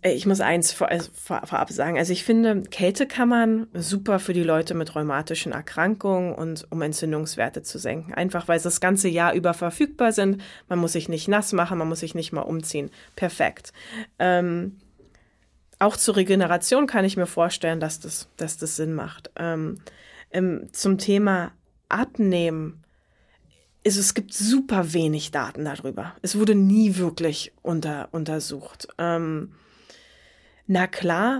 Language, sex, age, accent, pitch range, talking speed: German, female, 20-39, German, 165-210 Hz, 145 wpm